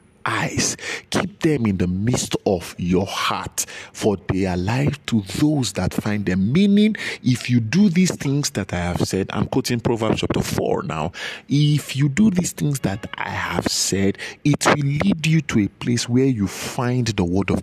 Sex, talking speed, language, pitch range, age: male, 190 wpm, English, 95-140 Hz, 50-69